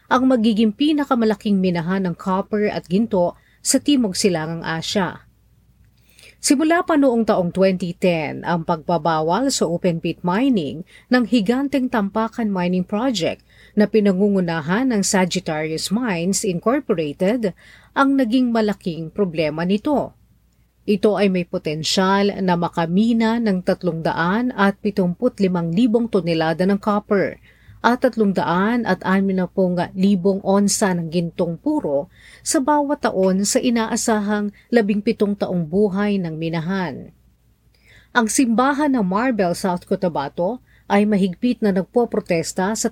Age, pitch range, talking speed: 40-59, 175-230 Hz, 115 wpm